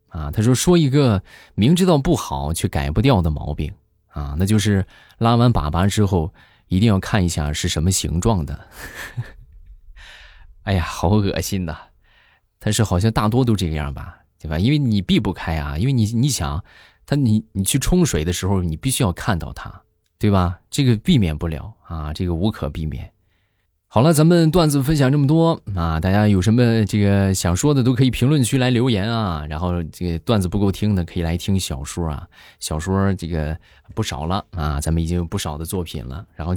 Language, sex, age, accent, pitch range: Chinese, male, 20-39, native, 85-115 Hz